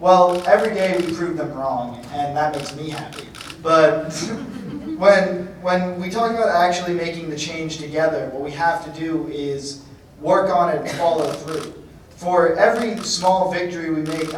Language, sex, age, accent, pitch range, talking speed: English, male, 20-39, American, 160-185 Hz, 170 wpm